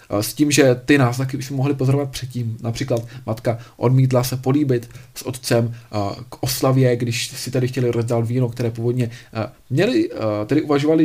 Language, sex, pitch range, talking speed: Czech, male, 115-145 Hz, 155 wpm